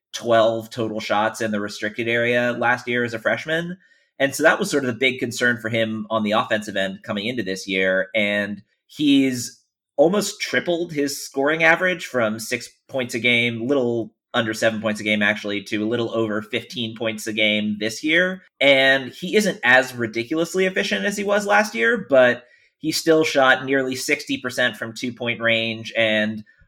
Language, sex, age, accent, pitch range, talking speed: English, male, 30-49, American, 110-135 Hz, 180 wpm